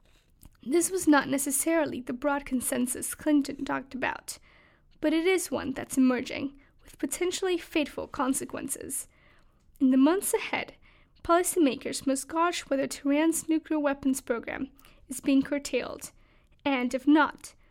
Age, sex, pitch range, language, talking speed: 10-29, female, 270-320 Hz, English, 130 wpm